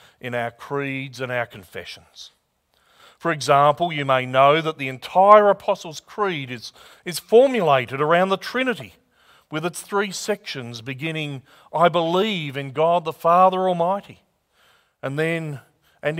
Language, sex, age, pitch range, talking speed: English, male, 40-59, 140-185 Hz, 135 wpm